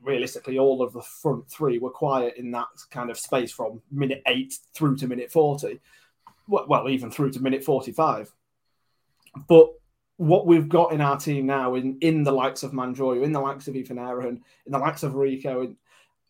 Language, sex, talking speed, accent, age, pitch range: English, male, 190 wpm, British, 20-39, 130-160 Hz